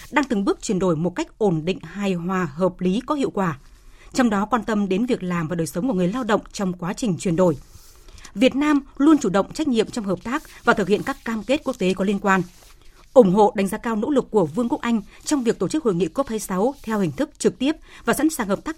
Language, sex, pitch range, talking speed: Vietnamese, female, 185-255 Hz, 270 wpm